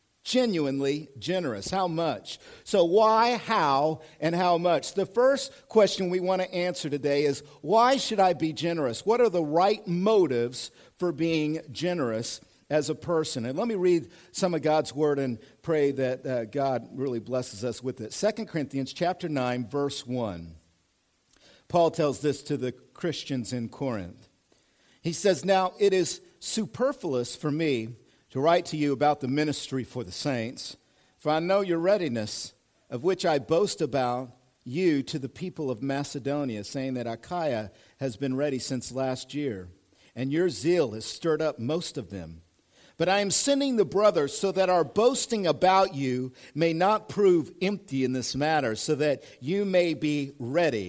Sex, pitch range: male, 125-180 Hz